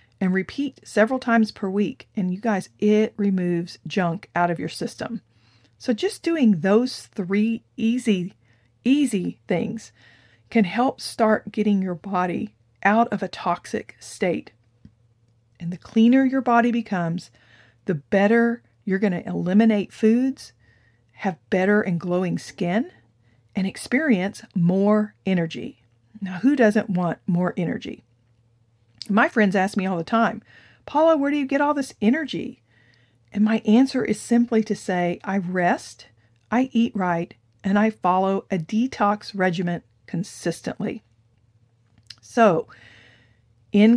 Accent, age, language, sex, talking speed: American, 40-59, English, female, 135 wpm